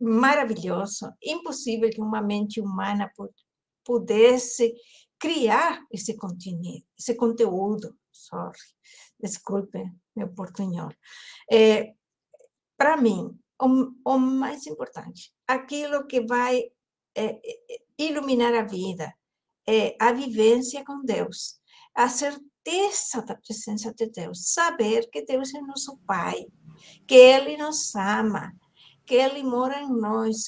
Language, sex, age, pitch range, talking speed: Portuguese, female, 60-79, 215-285 Hz, 100 wpm